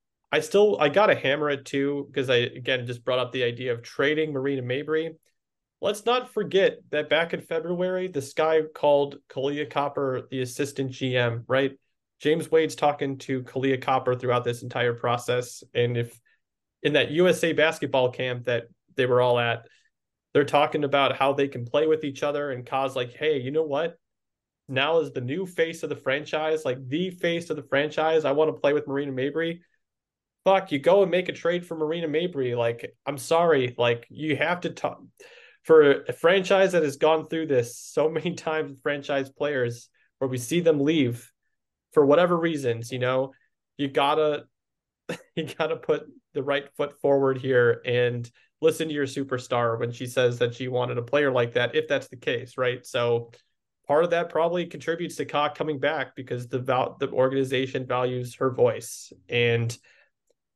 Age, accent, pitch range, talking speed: 30-49, American, 125-160 Hz, 180 wpm